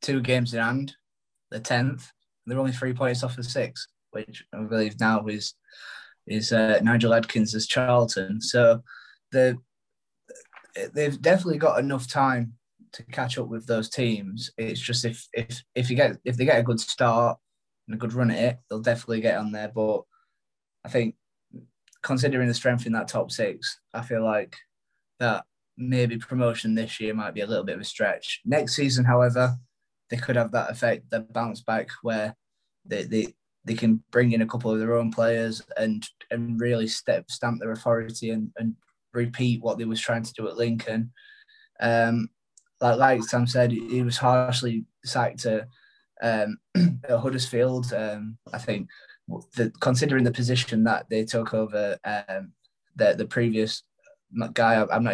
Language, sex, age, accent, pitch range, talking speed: English, male, 20-39, British, 110-125 Hz, 175 wpm